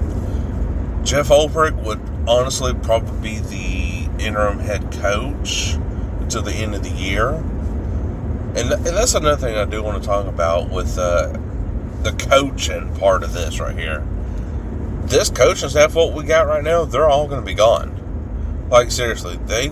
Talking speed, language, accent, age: 160 wpm, English, American, 30-49